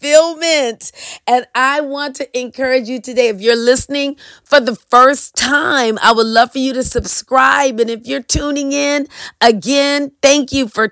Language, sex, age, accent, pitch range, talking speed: English, female, 40-59, American, 230-290 Hz, 170 wpm